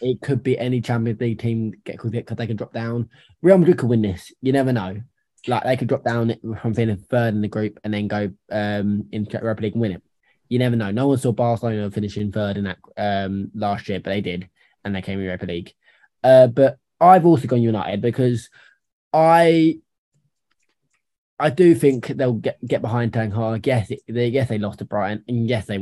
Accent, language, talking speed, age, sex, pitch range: British, English, 220 wpm, 20-39, male, 105-125 Hz